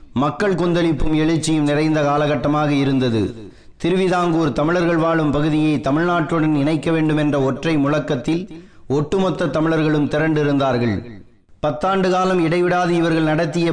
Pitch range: 140-165 Hz